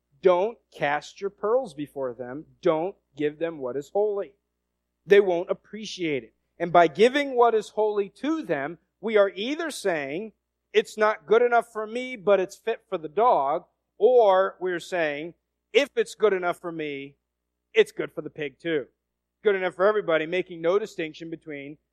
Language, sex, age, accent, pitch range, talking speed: English, male, 40-59, American, 145-215 Hz, 170 wpm